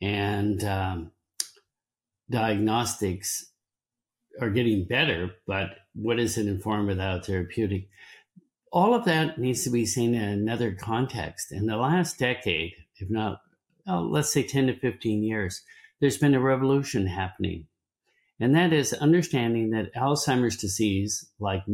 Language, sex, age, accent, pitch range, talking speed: English, male, 60-79, American, 95-130 Hz, 135 wpm